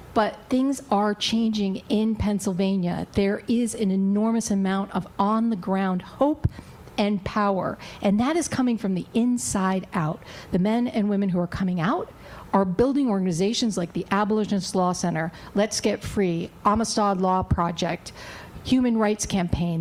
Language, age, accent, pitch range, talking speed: English, 50-69, American, 185-225 Hz, 150 wpm